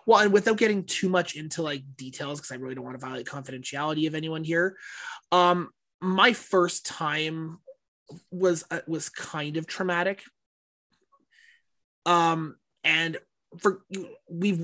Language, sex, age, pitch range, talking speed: English, male, 20-39, 150-195 Hz, 140 wpm